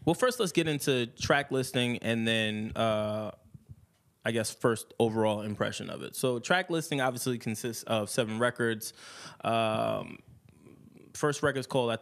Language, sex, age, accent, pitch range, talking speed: English, male, 20-39, American, 115-140 Hz, 155 wpm